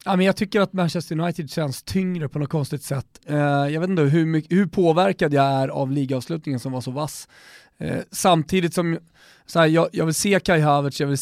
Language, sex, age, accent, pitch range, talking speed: Swedish, male, 30-49, native, 135-170 Hz, 185 wpm